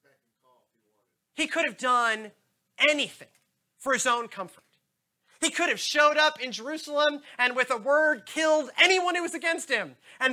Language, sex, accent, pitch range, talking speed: English, male, American, 155-265 Hz, 155 wpm